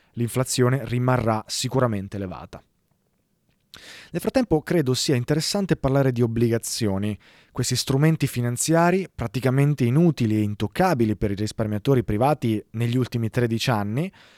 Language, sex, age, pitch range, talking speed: Italian, male, 20-39, 110-150 Hz, 115 wpm